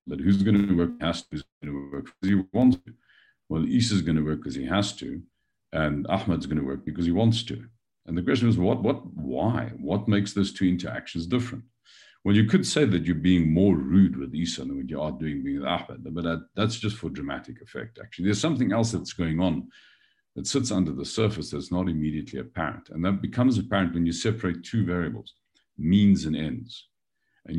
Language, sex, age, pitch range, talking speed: English, male, 50-69, 85-110 Hz, 220 wpm